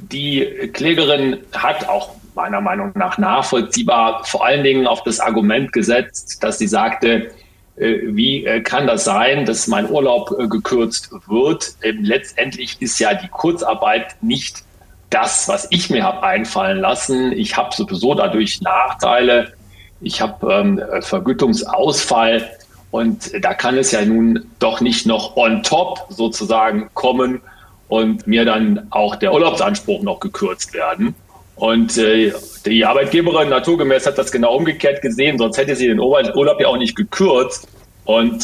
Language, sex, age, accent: German, male, 40-59, German